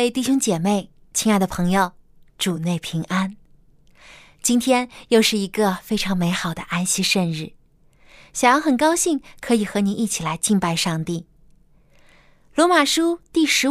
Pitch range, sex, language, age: 165-250 Hz, female, Chinese, 20-39